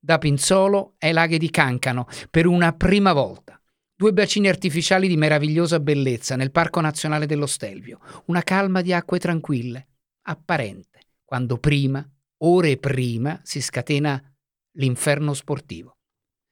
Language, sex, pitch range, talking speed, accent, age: Italian, male, 130-180 Hz, 125 wpm, native, 50-69